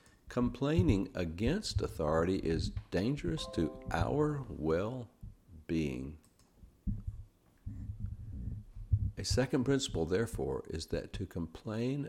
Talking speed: 80 wpm